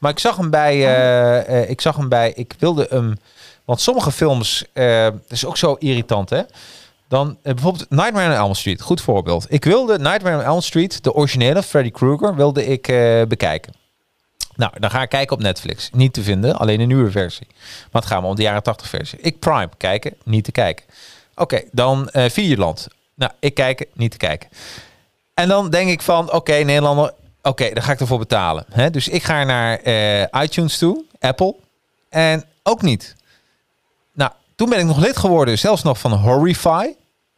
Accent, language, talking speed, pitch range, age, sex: Dutch, Dutch, 195 wpm, 110-155 Hz, 40-59, male